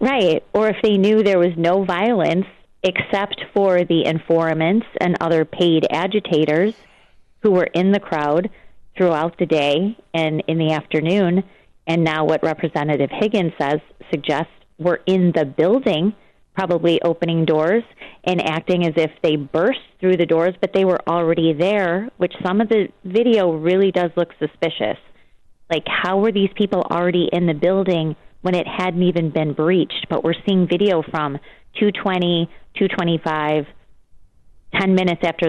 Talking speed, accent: 155 wpm, American